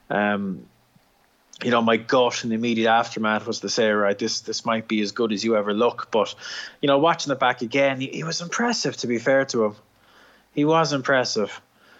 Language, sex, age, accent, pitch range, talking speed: English, male, 20-39, Irish, 110-125 Hz, 210 wpm